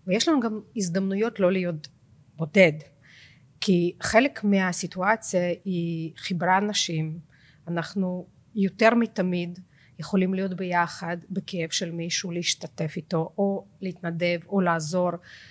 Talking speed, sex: 110 wpm, female